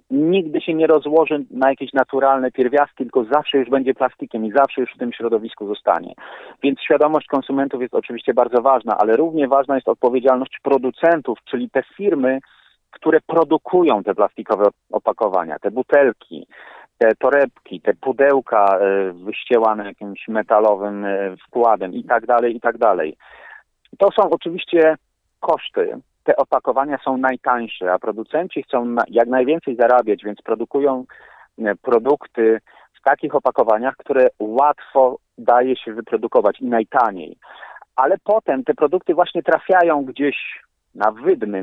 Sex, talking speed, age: male, 135 wpm, 40-59